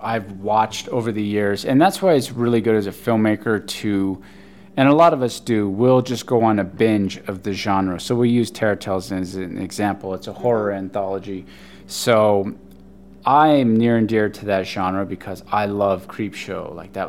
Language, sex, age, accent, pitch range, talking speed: English, male, 20-39, American, 100-120 Hz, 195 wpm